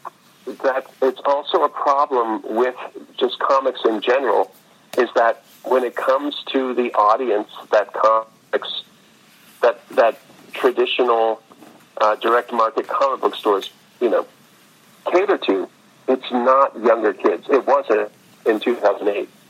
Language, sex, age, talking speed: English, male, 50-69, 125 wpm